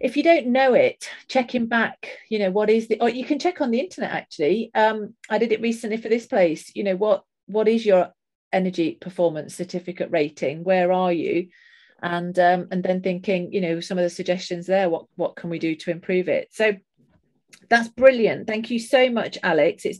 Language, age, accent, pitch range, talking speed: English, 40-59, British, 180-230 Hz, 210 wpm